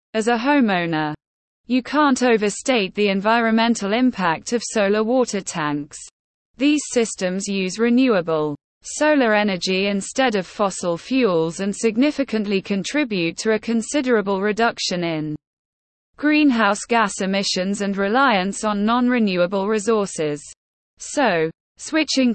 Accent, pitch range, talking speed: British, 180-245 Hz, 115 wpm